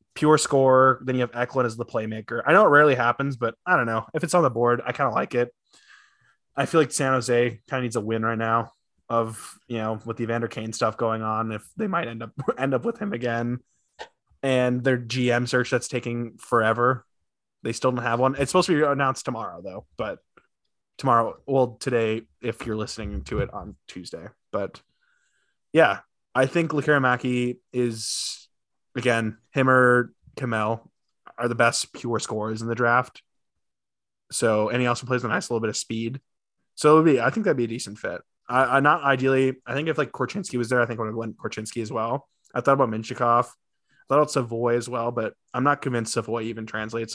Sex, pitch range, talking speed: male, 115-130 Hz, 205 wpm